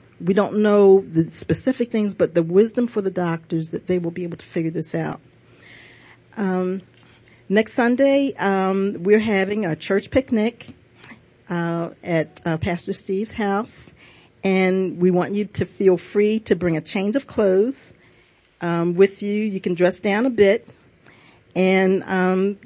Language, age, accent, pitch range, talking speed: English, 50-69, American, 165-205 Hz, 160 wpm